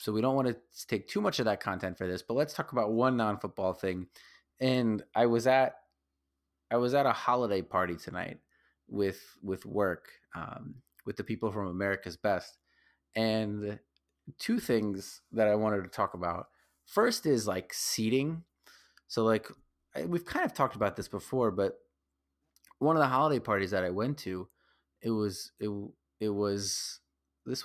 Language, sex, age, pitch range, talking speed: English, male, 30-49, 95-135 Hz, 170 wpm